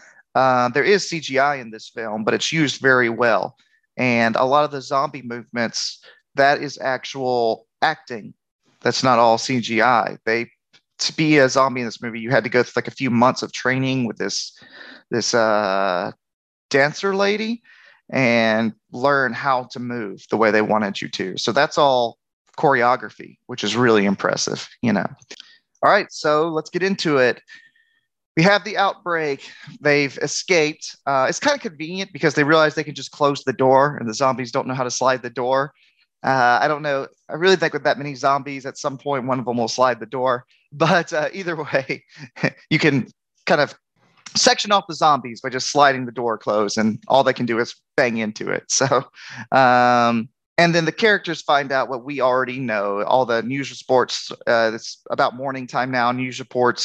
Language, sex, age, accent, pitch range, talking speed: English, male, 30-49, American, 120-150 Hz, 190 wpm